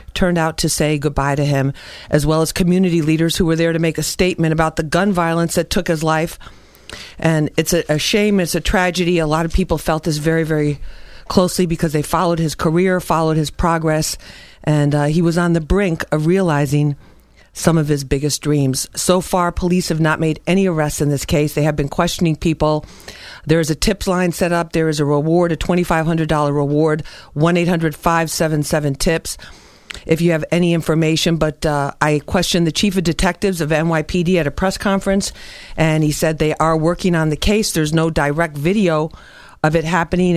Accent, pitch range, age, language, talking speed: American, 150-175 Hz, 50-69, English, 200 wpm